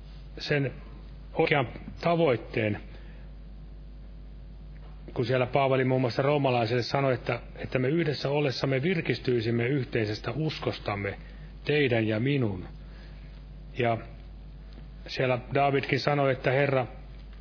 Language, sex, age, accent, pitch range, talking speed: Finnish, male, 40-59, native, 125-150 Hz, 95 wpm